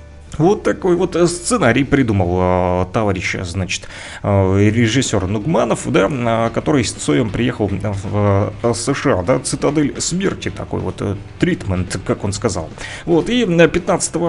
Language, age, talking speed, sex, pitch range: Russian, 30-49, 145 wpm, male, 105-145 Hz